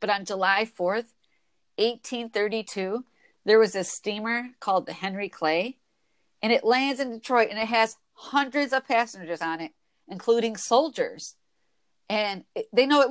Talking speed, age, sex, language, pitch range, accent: 145 wpm, 50-69, female, English, 190-250 Hz, American